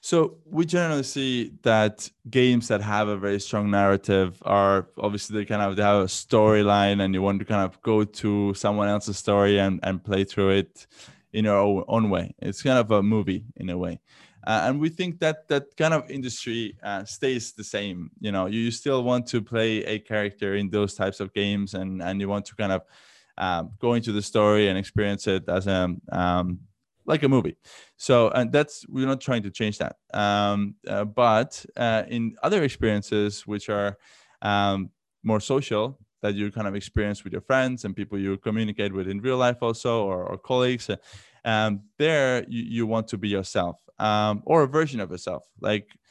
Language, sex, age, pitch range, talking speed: English, male, 20-39, 100-120 Hz, 200 wpm